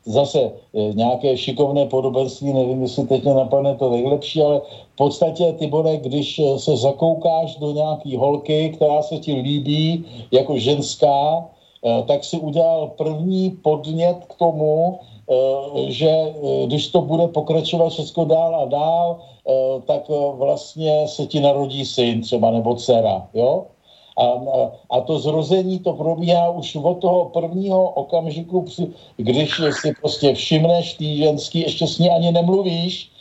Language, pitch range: Slovak, 140-170 Hz